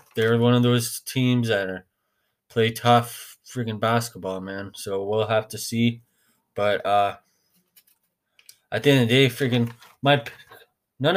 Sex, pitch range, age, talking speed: male, 105-120 Hz, 20-39, 150 wpm